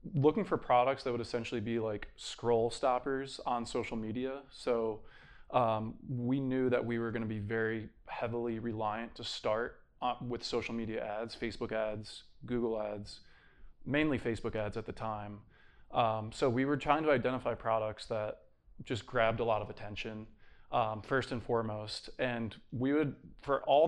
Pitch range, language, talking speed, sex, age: 115-130 Hz, English, 165 wpm, male, 20-39